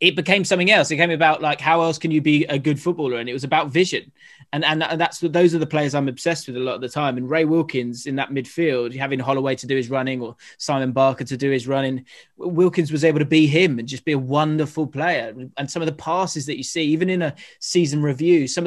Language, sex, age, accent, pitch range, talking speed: English, male, 20-39, British, 135-165 Hz, 260 wpm